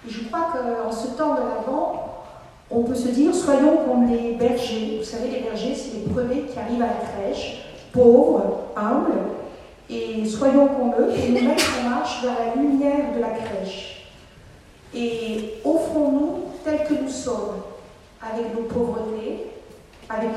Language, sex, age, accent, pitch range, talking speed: French, female, 50-69, French, 225-275 Hz, 160 wpm